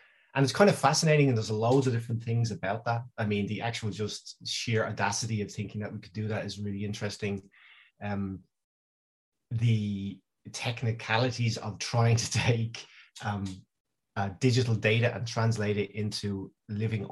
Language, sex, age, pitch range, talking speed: Danish, male, 30-49, 100-125 Hz, 160 wpm